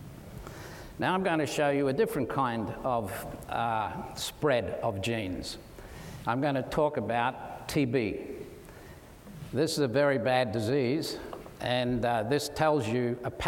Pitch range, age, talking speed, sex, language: 115-145 Hz, 60-79, 140 wpm, male, English